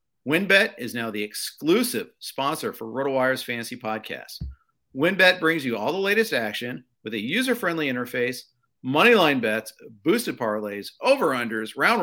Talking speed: 150 wpm